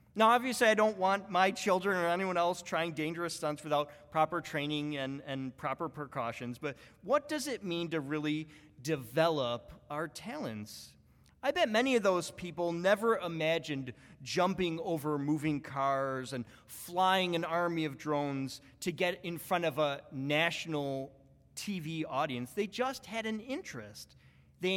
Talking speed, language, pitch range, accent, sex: 155 wpm, English, 150-195 Hz, American, male